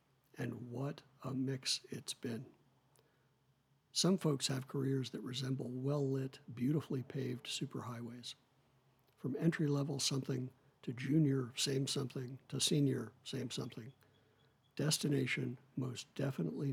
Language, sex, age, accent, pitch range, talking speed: English, male, 60-79, American, 130-140 Hz, 110 wpm